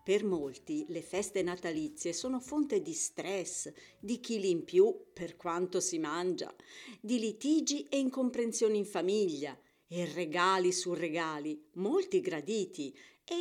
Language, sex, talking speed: Italian, female, 135 wpm